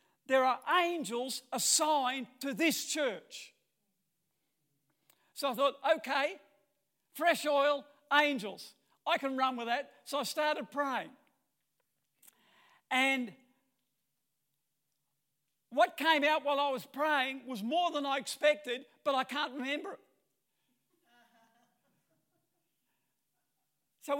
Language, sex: English, male